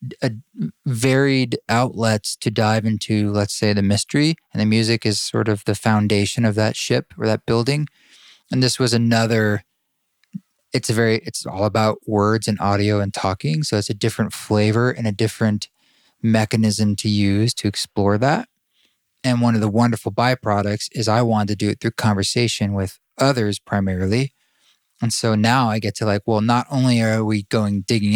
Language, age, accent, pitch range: English, 20-39, American, 105-120 Hz